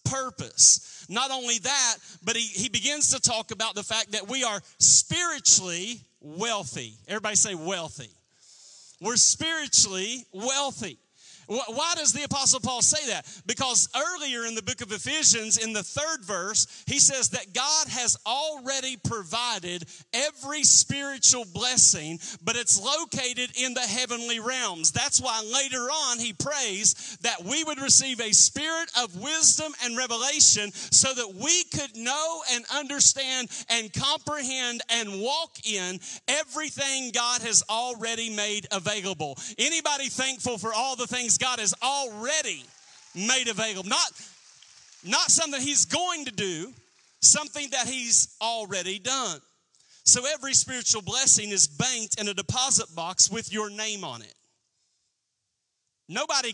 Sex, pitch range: male, 195-265 Hz